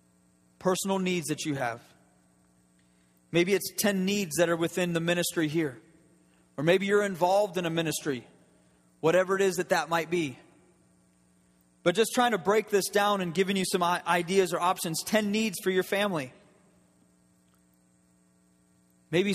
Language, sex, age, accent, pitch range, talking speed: English, male, 30-49, American, 135-180 Hz, 150 wpm